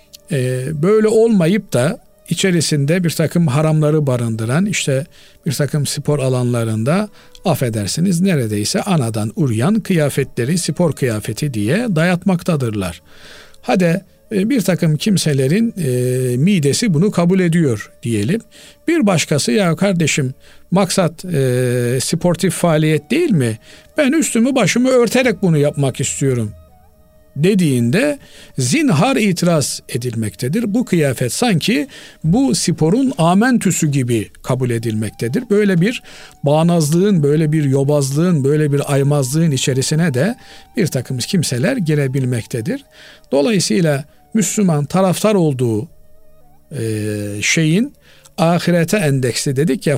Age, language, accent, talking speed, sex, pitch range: 50-69, Turkish, native, 105 wpm, male, 130-190 Hz